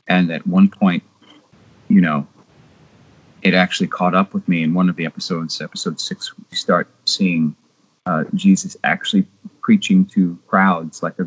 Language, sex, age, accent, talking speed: English, male, 40-59, American, 160 wpm